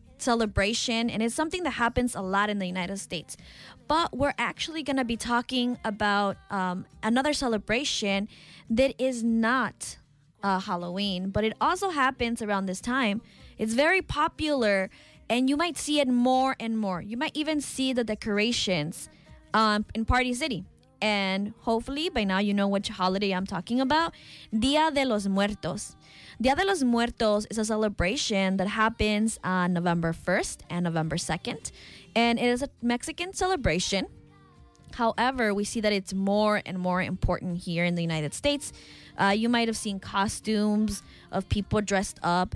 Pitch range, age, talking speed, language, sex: 195-255 Hz, 20-39, 165 wpm, English, female